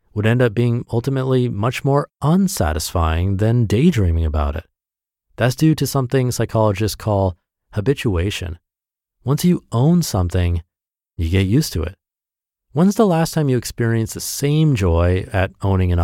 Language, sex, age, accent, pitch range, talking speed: English, male, 30-49, American, 95-125 Hz, 150 wpm